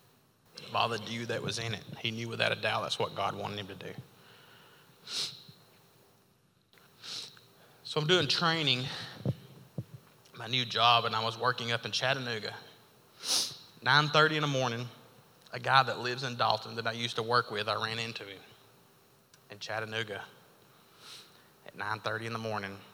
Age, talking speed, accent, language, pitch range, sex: 30-49, 155 wpm, American, English, 120-145 Hz, male